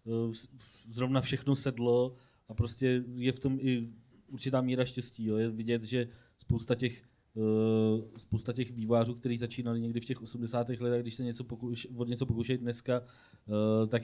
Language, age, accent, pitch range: Czech, 20-39, native, 110-125 Hz